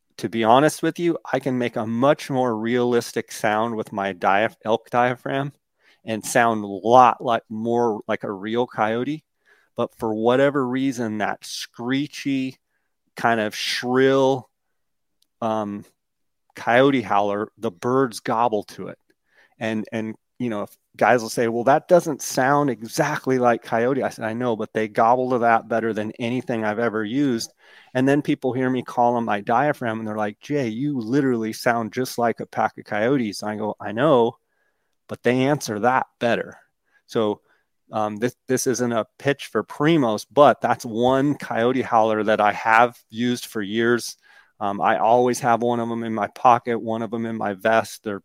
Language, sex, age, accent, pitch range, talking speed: English, male, 30-49, American, 110-130 Hz, 180 wpm